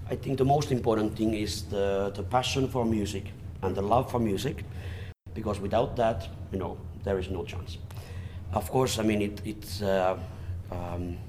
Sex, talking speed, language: male, 180 wpm, French